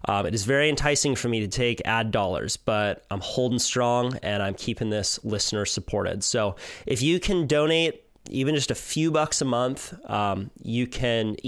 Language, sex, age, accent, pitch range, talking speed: English, male, 30-49, American, 110-140 Hz, 190 wpm